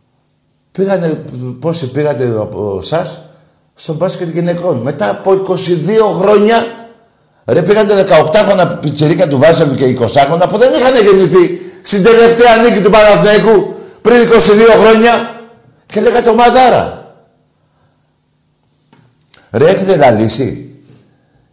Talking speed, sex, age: 115 wpm, male, 50-69